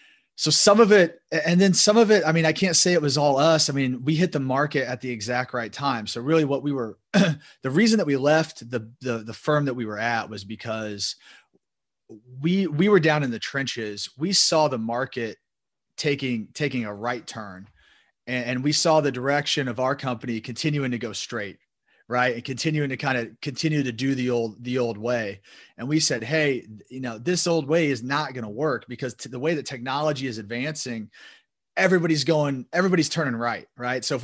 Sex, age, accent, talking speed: male, 30-49, American, 210 wpm